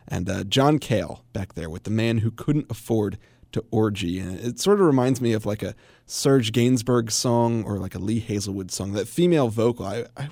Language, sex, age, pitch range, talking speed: English, male, 30-49, 105-125 Hz, 215 wpm